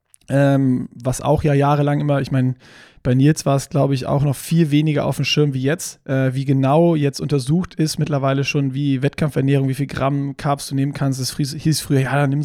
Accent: German